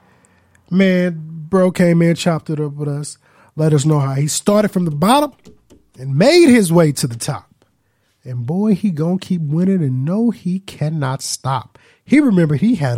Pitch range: 120-165 Hz